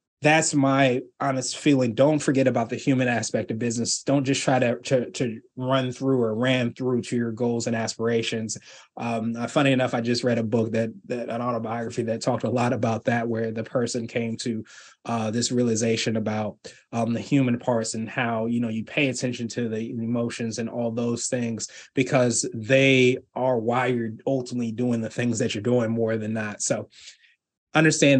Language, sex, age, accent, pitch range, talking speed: English, male, 20-39, American, 115-140 Hz, 190 wpm